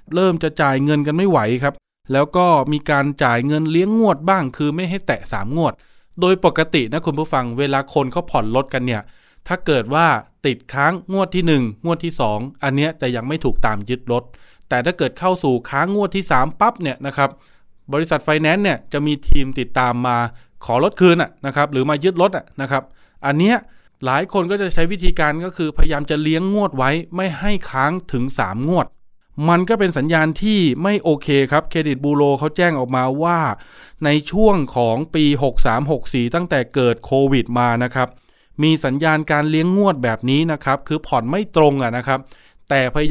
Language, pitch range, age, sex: Thai, 130-170 Hz, 20-39, male